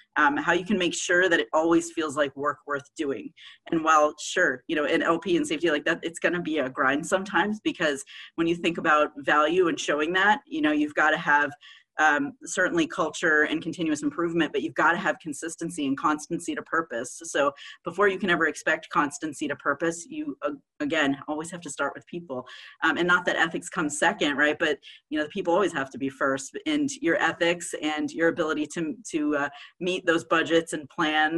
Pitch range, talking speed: 145-175 Hz, 210 wpm